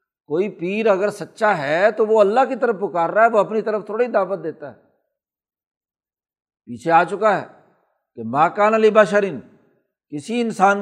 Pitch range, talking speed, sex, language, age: 165-220 Hz, 165 wpm, male, Urdu, 60-79